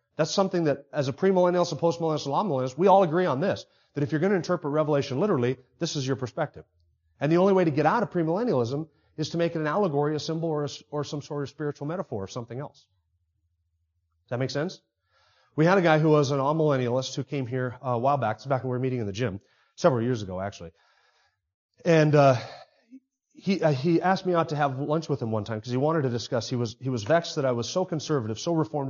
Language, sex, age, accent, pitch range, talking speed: English, male, 30-49, American, 120-155 Hz, 245 wpm